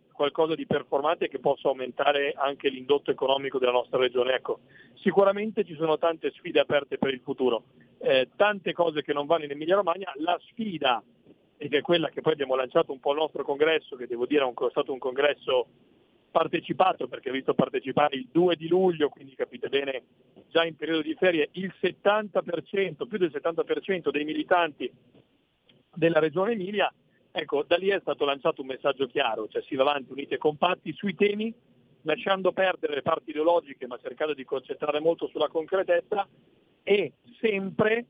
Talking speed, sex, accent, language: 175 wpm, male, native, Italian